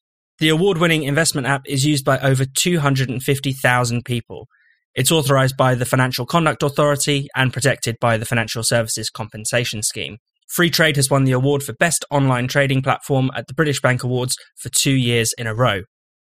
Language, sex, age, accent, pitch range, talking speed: English, male, 20-39, British, 125-160 Hz, 175 wpm